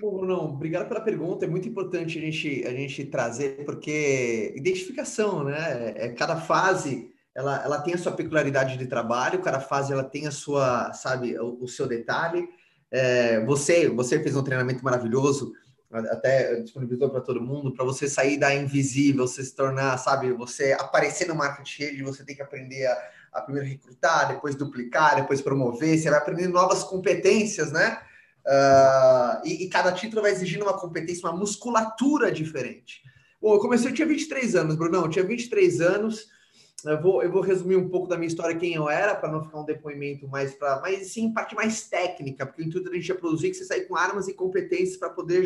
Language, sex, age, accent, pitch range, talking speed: Portuguese, male, 20-39, Brazilian, 140-205 Hz, 195 wpm